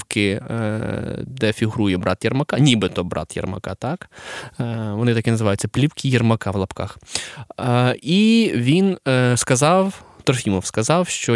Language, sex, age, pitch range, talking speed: Russian, male, 20-39, 110-155 Hz, 110 wpm